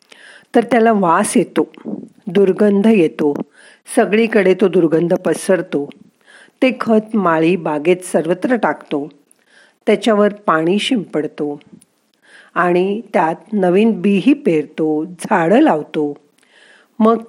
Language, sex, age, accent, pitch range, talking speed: Marathi, female, 50-69, native, 170-220 Hz, 95 wpm